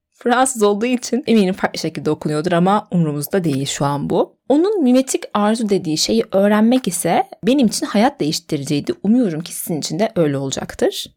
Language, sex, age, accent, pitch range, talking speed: Turkish, female, 30-49, native, 170-245 Hz, 165 wpm